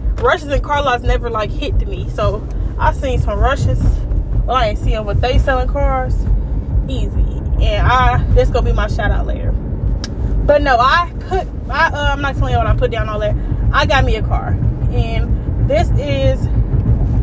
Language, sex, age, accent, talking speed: English, female, 20-39, American, 190 wpm